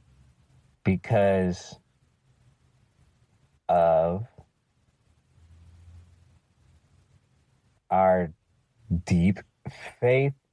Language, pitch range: English, 85-115 Hz